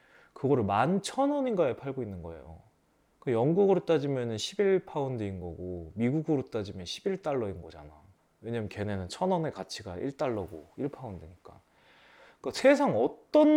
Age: 20-39